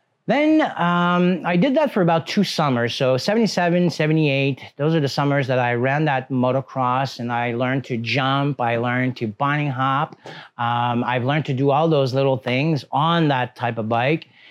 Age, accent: 40-59, American